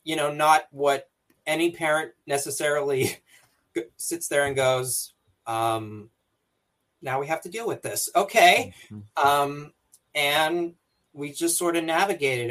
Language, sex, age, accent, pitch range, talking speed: English, male, 30-49, American, 130-165 Hz, 130 wpm